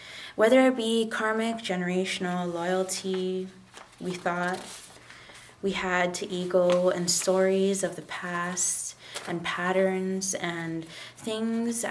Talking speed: 105 wpm